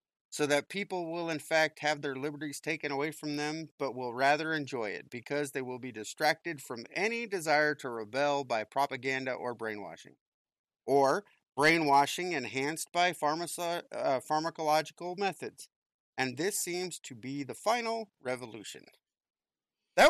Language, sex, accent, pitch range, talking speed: English, male, American, 125-165 Hz, 145 wpm